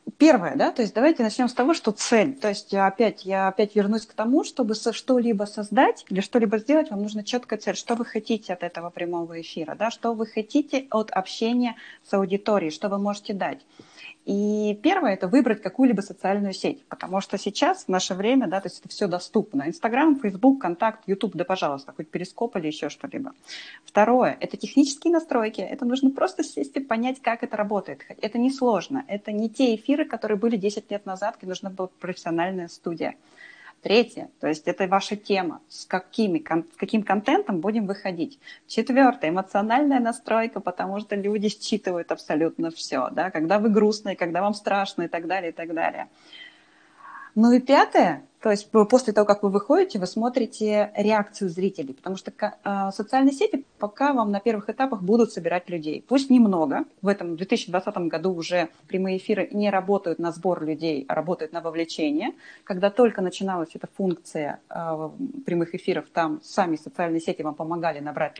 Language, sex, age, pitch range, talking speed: Russian, female, 20-39, 185-245 Hz, 180 wpm